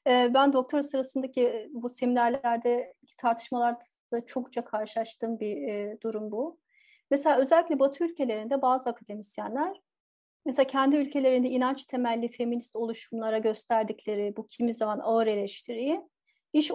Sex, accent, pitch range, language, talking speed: female, native, 225-280 Hz, Turkish, 110 wpm